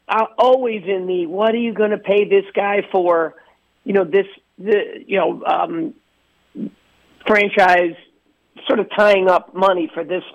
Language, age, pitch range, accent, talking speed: English, 50-69, 180-220 Hz, American, 160 wpm